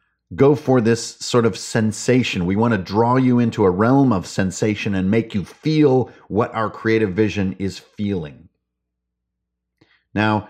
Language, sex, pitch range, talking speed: English, male, 95-120 Hz, 155 wpm